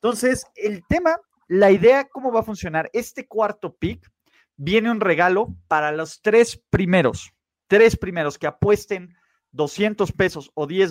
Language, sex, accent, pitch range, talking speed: Spanish, male, Mexican, 140-190 Hz, 150 wpm